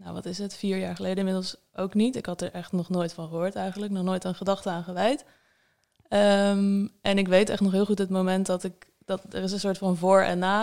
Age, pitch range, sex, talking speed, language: 20-39, 180-200 Hz, female, 260 wpm, Dutch